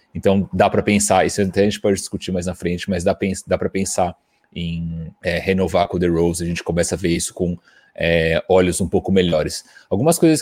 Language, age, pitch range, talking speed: Portuguese, 30-49, 95-110 Hz, 220 wpm